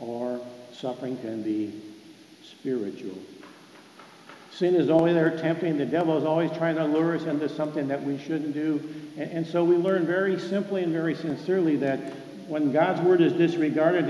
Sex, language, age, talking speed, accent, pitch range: male, English, 60-79, 170 wpm, American, 135-175 Hz